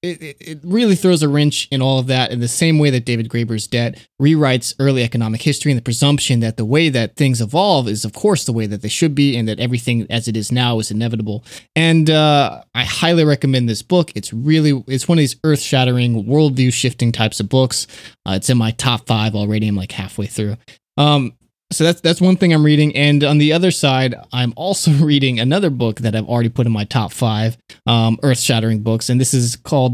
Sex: male